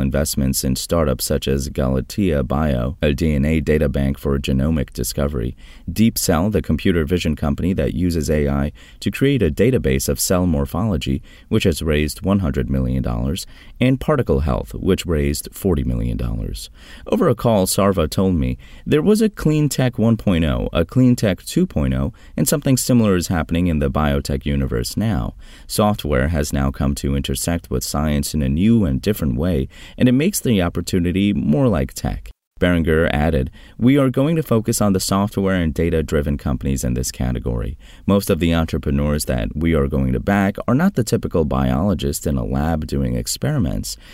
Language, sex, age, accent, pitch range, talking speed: English, male, 30-49, American, 70-100 Hz, 175 wpm